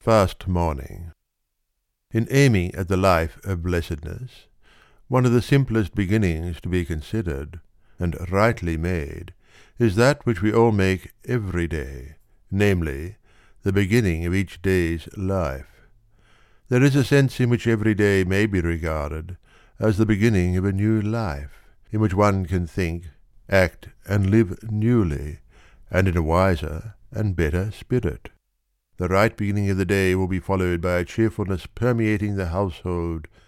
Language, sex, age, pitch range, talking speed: English, male, 60-79, 85-110 Hz, 150 wpm